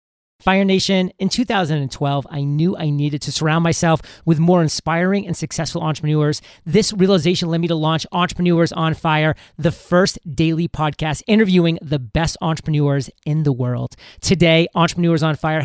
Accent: American